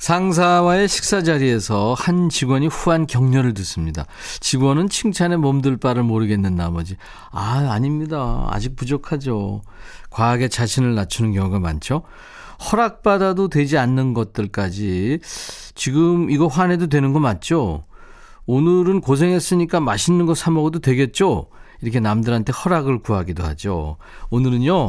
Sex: male